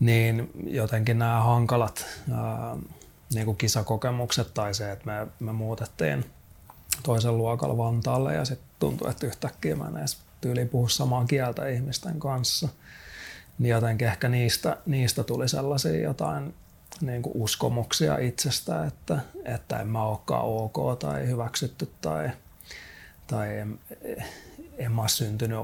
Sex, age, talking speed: male, 30-49, 130 wpm